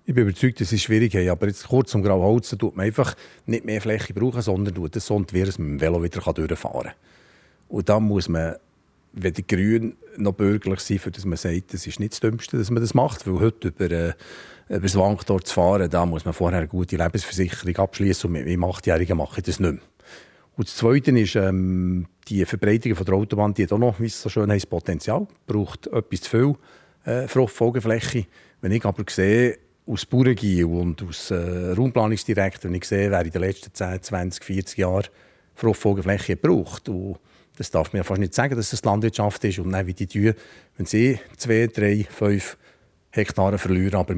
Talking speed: 200 wpm